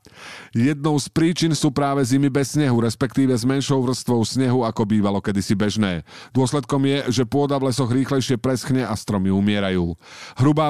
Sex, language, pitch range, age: male, Slovak, 100-135 Hz, 40-59